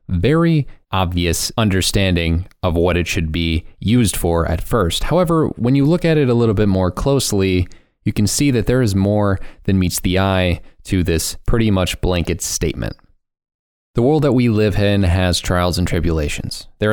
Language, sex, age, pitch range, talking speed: English, male, 20-39, 90-115 Hz, 180 wpm